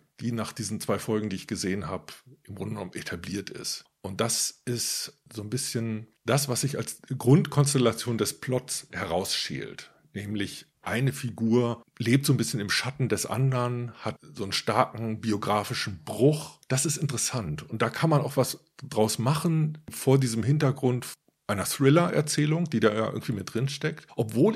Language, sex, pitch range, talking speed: German, male, 110-140 Hz, 165 wpm